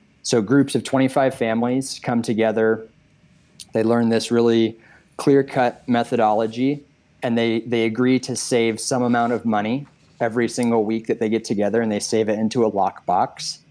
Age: 20-39